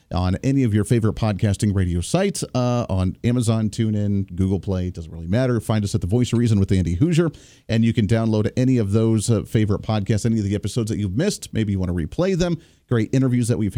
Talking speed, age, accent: 235 wpm, 40-59, American